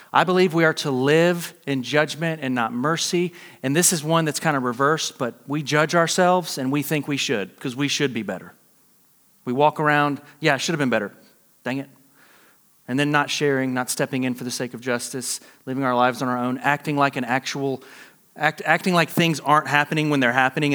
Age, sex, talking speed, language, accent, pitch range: 30-49, male, 215 wpm, English, American, 130-165 Hz